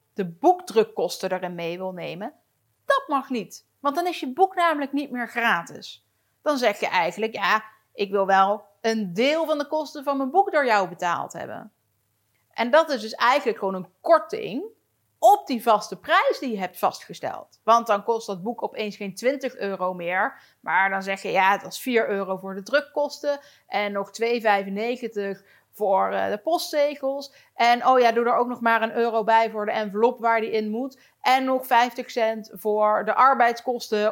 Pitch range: 200-270 Hz